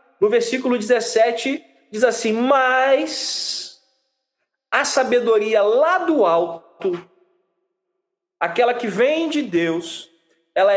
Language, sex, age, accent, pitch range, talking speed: Portuguese, male, 40-59, Brazilian, 230-335 Hz, 95 wpm